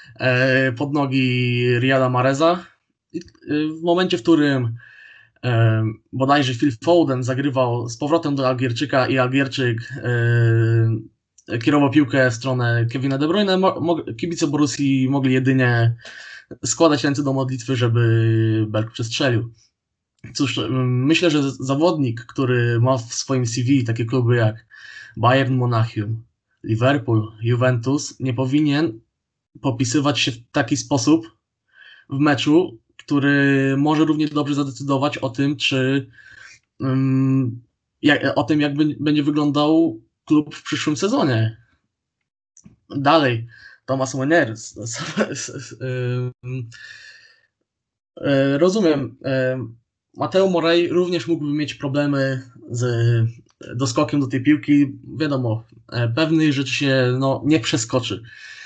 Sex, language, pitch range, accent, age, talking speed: male, Polish, 120-150 Hz, native, 20-39, 110 wpm